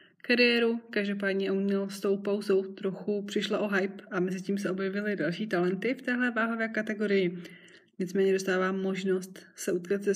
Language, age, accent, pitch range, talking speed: Czech, 20-39, native, 180-200 Hz, 155 wpm